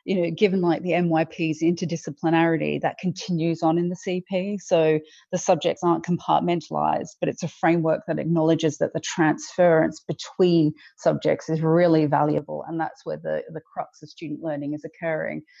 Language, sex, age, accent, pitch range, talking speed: English, female, 30-49, Australian, 155-175 Hz, 165 wpm